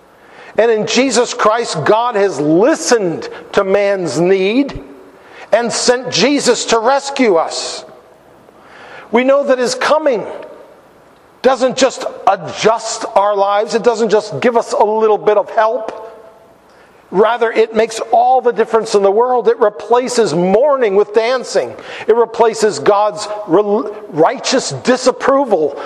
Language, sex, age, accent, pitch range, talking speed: English, male, 50-69, American, 195-250 Hz, 130 wpm